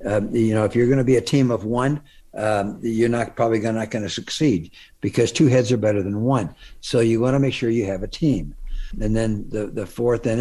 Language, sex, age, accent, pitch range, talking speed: English, male, 60-79, American, 105-130 Hz, 250 wpm